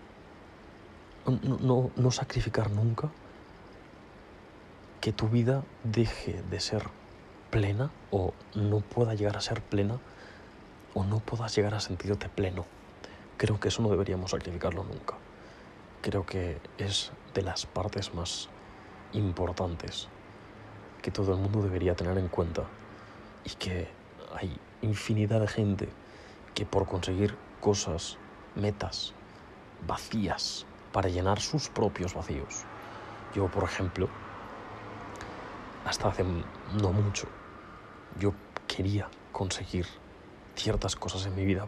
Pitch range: 95-105 Hz